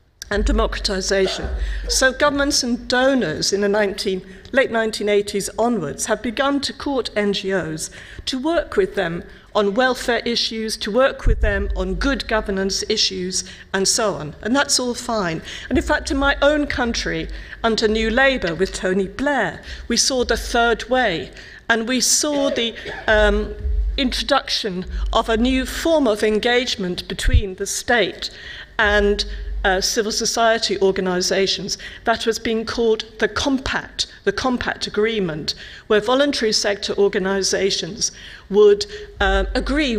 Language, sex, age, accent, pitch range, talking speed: German, female, 50-69, British, 195-255 Hz, 140 wpm